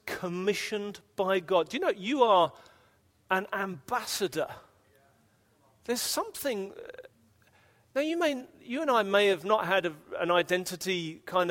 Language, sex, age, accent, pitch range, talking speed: English, male, 40-59, British, 140-225 Hz, 130 wpm